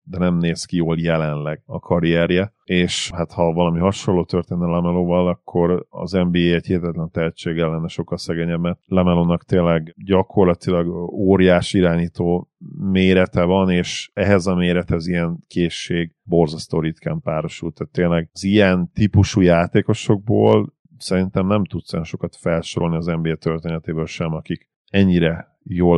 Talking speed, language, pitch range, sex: 135 wpm, Hungarian, 85-95 Hz, male